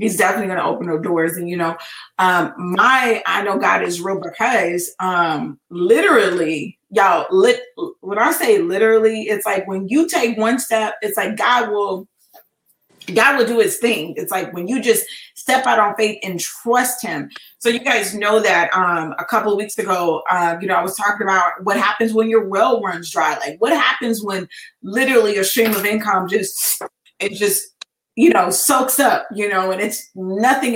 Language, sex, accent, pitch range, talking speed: English, female, American, 185-235 Hz, 195 wpm